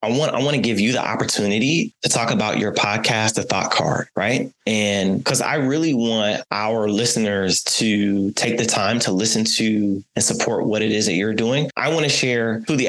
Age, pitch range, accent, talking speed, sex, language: 20-39, 105-130 Hz, American, 210 wpm, male, English